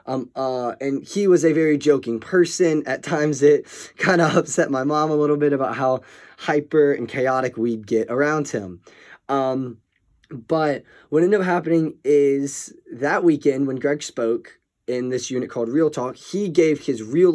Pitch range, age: 120-155 Hz, 20-39